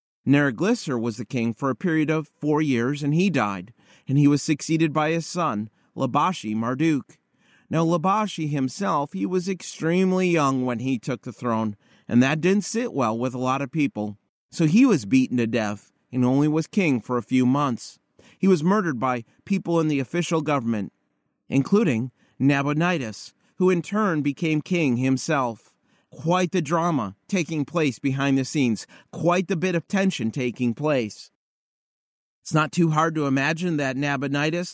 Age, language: 30-49, English